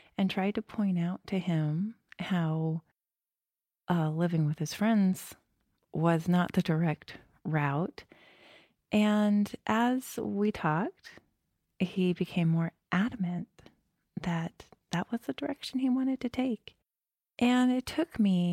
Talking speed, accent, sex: 125 wpm, American, female